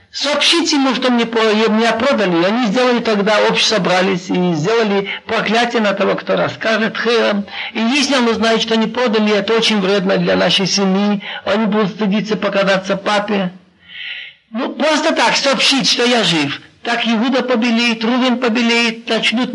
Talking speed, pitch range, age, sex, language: 150 wpm, 215-275 Hz, 50-69, male, Russian